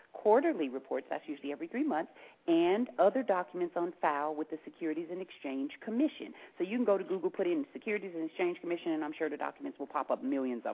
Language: English